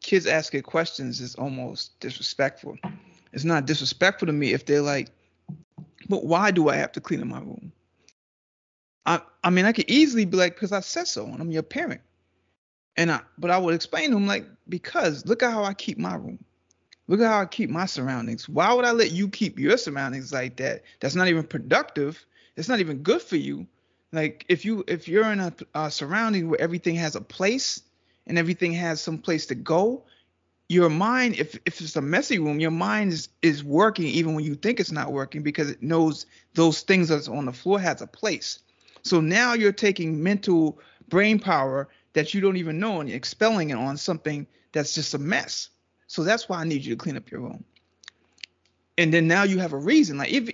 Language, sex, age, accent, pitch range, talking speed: English, male, 20-39, American, 155-200 Hz, 215 wpm